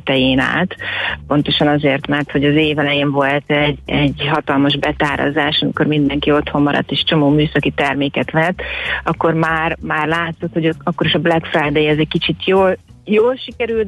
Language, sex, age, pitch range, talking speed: Hungarian, female, 40-59, 145-175 Hz, 165 wpm